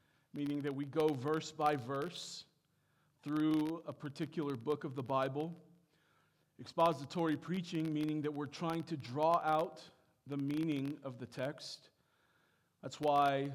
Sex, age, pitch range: male, 40-59, 135-160 Hz